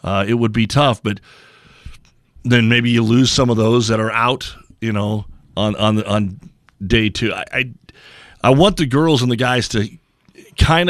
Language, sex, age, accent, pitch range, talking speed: English, male, 40-59, American, 105-130 Hz, 185 wpm